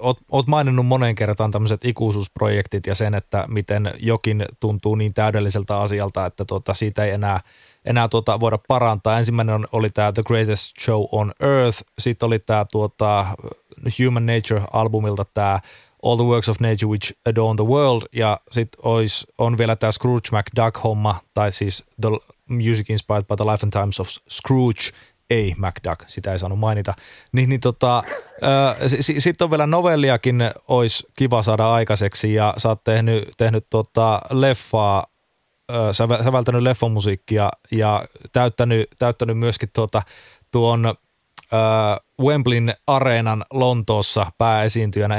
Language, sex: Finnish, male